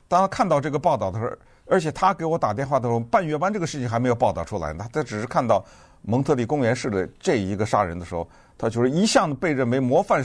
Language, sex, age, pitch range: Chinese, male, 50-69, 110-160 Hz